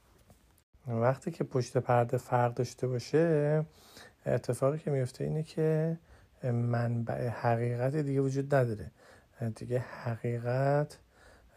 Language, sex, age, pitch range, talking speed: Persian, male, 50-69, 115-130 Hz, 100 wpm